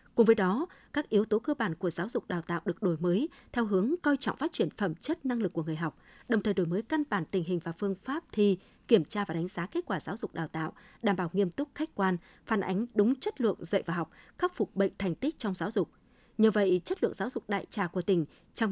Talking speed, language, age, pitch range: 275 wpm, Vietnamese, 20-39, 185-235 Hz